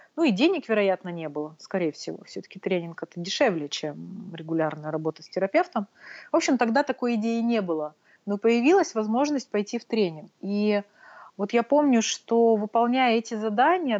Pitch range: 180-230 Hz